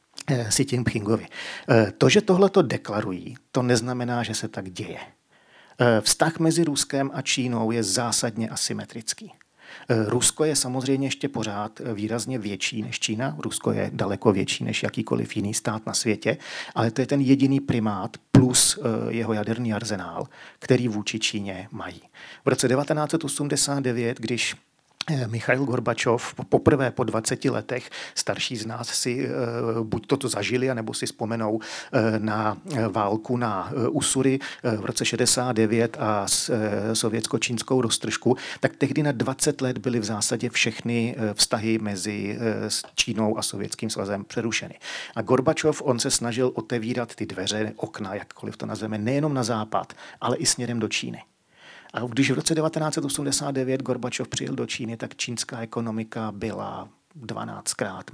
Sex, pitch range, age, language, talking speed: male, 110-130 Hz, 40-59, Czech, 135 wpm